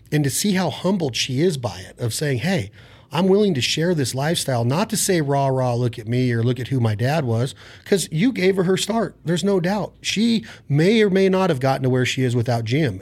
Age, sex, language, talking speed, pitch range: 40-59, male, English, 255 wpm, 120-165 Hz